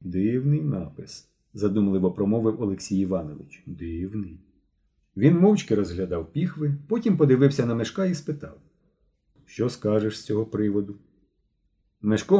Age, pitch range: 40-59, 95-140 Hz